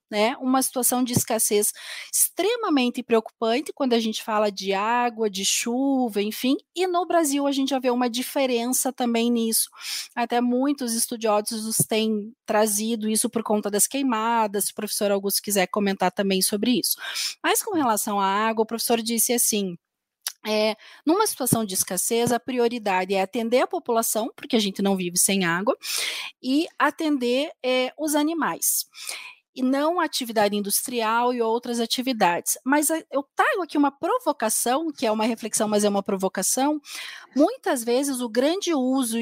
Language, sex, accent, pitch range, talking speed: Portuguese, female, Brazilian, 215-280 Hz, 155 wpm